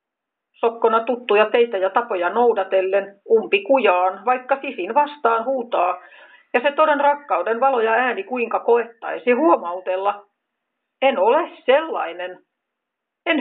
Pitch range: 210-295 Hz